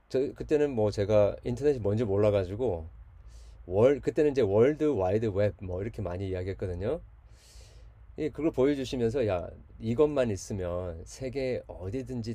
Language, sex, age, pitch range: Korean, male, 30-49, 95-130 Hz